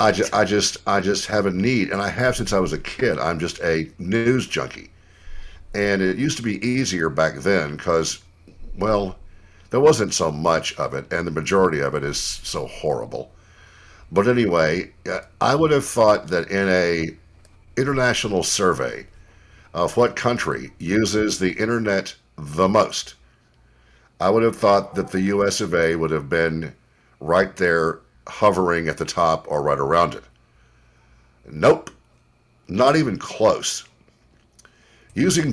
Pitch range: 85-110 Hz